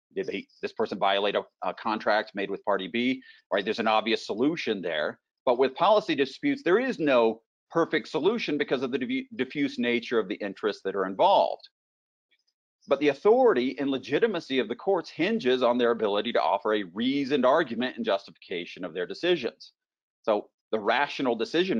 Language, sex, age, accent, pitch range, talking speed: English, male, 40-59, American, 110-155 Hz, 170 wpm